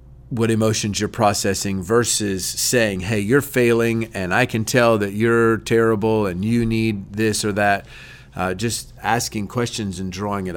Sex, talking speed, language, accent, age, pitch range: male, 165 wpm, English, American, 40-59, 100-120 Hz